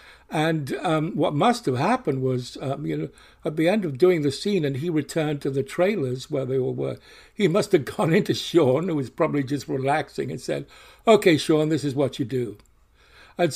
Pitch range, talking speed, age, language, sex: 140-180 Hz, 210 wpm, 60-79, English, male